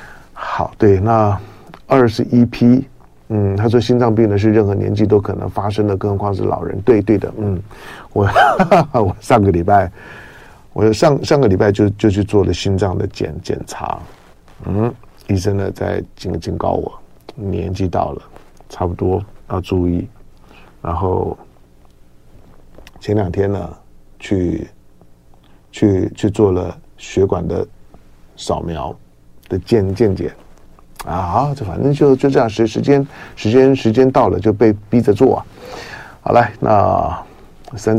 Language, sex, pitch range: Chinese, male, 95-115 Hz